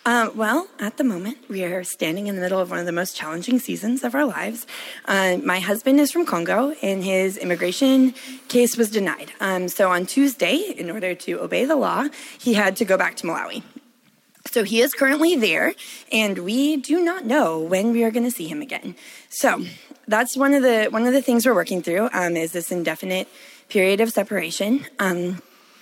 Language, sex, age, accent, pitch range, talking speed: English, female, 20-39, American, 190-265 Hz, 205 wpm